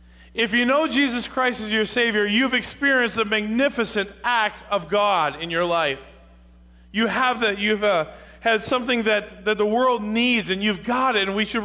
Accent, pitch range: American, 175-245 Hz